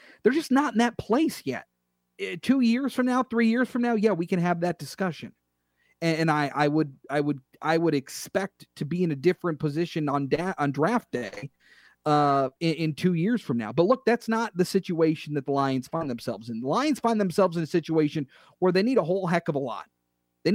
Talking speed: 230 wpm